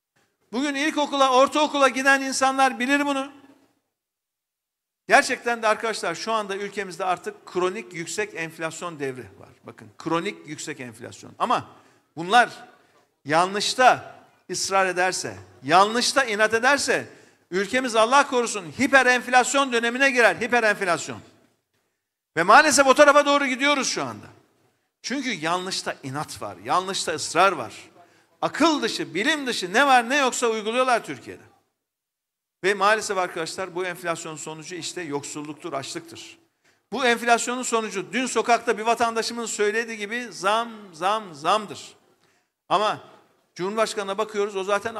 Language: Turkish